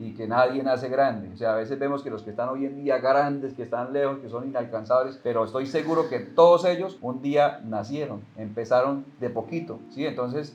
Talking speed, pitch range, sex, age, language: 215 wpm, 115-135 Hz, male, 30-49, Spanish